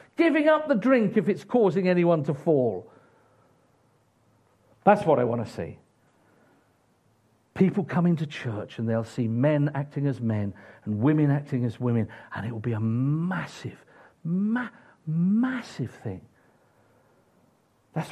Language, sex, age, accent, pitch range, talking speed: English, male, 50-69, British, 110-155 Hz, 135 wpm